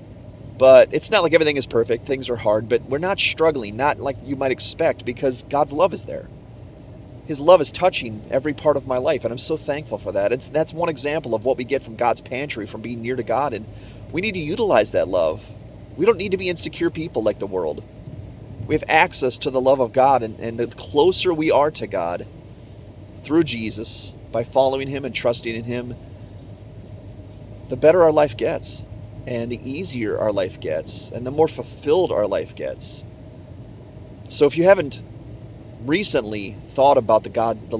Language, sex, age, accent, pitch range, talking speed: English, male, 30-49, American, 110-135 Hz, 200 wpm